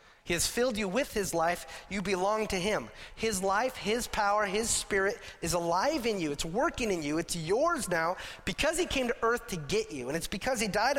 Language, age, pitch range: English, 30-49, 150-215 Hz